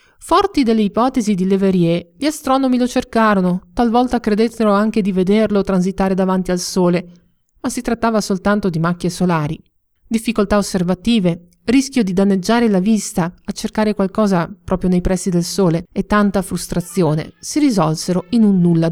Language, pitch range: Italian, 180-240 Hz